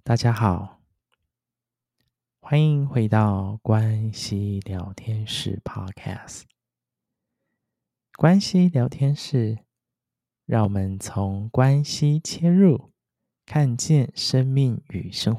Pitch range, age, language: 105-140 Hz, 20-39, Chinese